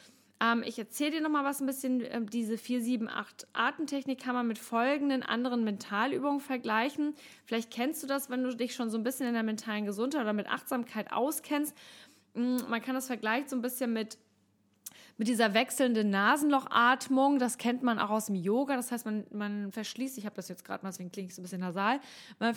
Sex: female